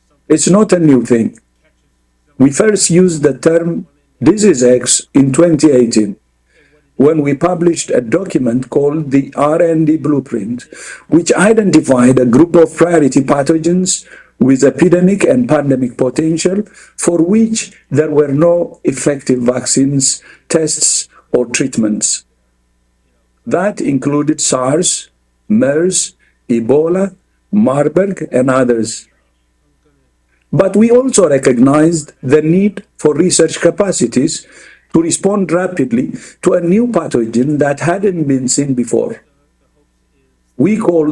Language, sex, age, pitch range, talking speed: English, male, 50-69, 115-170 Hz, 110 wpm